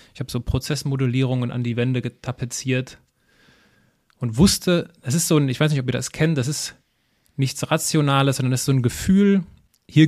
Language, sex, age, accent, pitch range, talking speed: German, male, 30-49, German, 125-155 Hz, 190 wpm